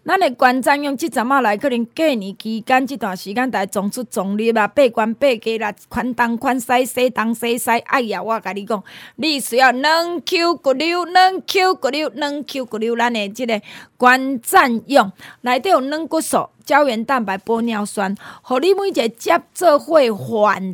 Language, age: Chinese, 20-39